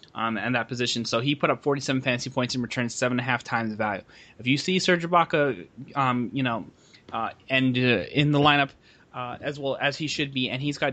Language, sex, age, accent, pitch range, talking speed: English, male, 20-39, American, 115-140 Hz, 240 wpm